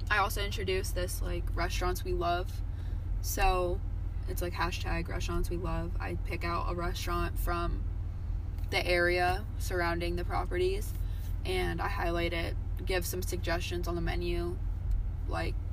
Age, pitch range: 20-39, 85-95 Hz